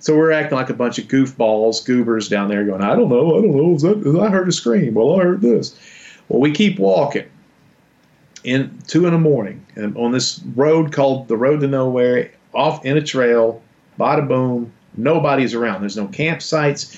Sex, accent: male, American